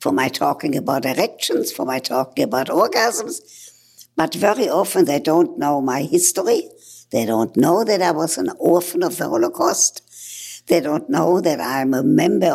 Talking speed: 170 wpm